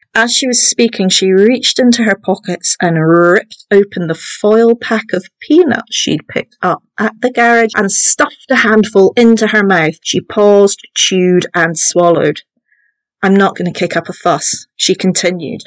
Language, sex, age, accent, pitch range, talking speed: English, female, 40-59, British, 175-230 Hz, 170 wpm